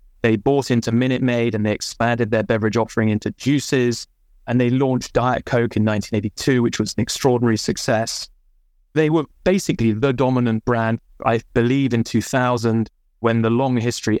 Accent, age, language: British, 20-39, English